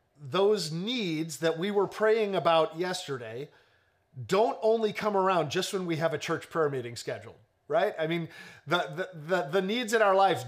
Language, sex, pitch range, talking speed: English, male, 155-220 Hz, 185 wpm